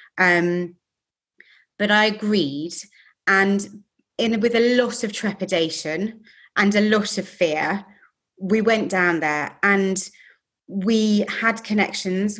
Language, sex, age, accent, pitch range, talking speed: English, female, 30-49, British, 180-210 Hz, 115 wpm